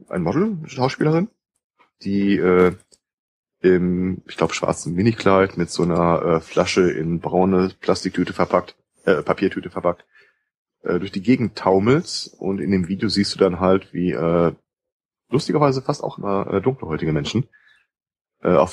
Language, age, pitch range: German, 30-49, 90-105 Hz